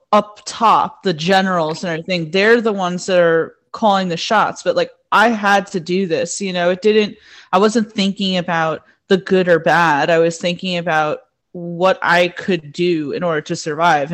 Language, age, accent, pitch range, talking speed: English, 30-49, American, 170-195 Hz, 190 wpm